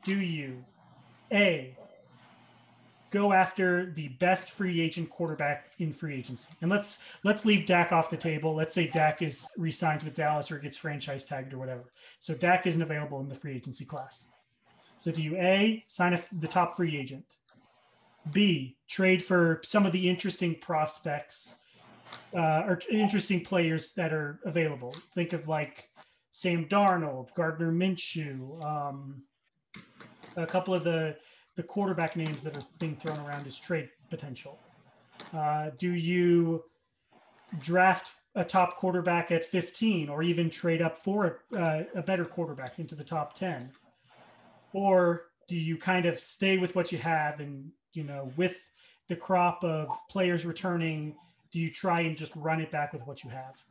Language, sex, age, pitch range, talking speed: English, male, 30-49, 150-180 Hz, 165 wpm